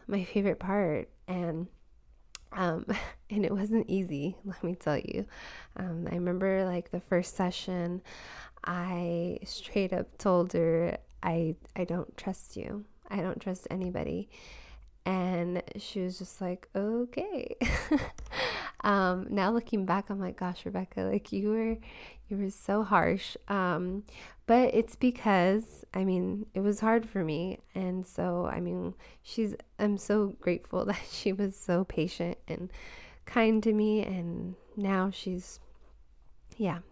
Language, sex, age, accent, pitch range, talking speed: English, female, 20-39, American, 180-205 Hz, 140 wpm